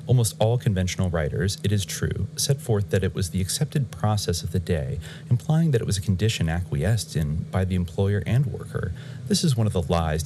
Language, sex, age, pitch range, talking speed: English, male, 30-49, 85-115 Hz, 215 wpm